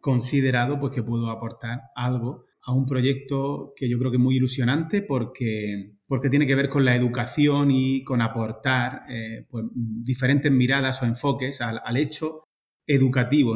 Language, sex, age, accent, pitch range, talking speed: Spanish, male, 30-49, Spanish, 120-140 Hz, 155 wpm